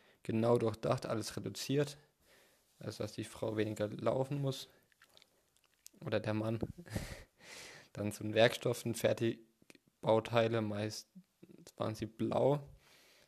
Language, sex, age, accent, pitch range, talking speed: German, male, 20-39, German, 110-130 Hz, 100 wpm